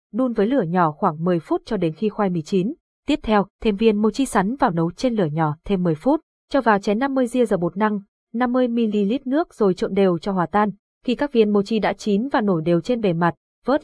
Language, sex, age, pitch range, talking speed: Vietnamese, female, 20-39, 180-235 Hz, 245 wpm